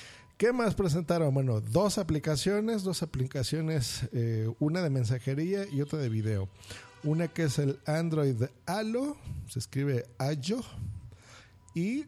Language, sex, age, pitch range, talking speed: Spanish, male, 40-59, 115-155 Hz, 130 wpm